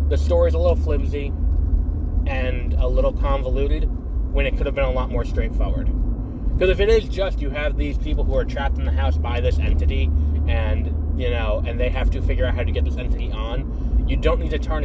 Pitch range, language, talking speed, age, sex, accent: 70-90 Hz, English, 225 wpm, 20-39, male, American